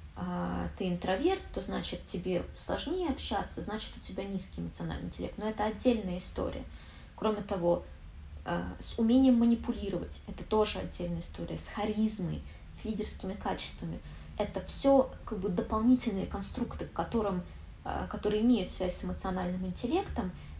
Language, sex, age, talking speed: Russian, female, 20-39, 125 wpm